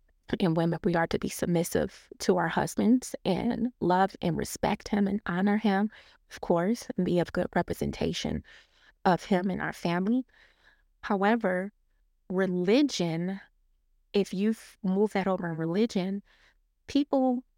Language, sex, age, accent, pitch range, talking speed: English, female, 20-39, American, 185-225 Hz, 135 wpm